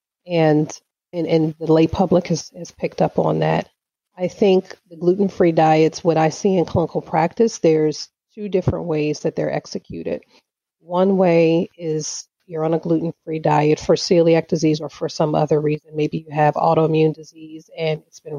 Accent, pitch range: American, 150-170 Hz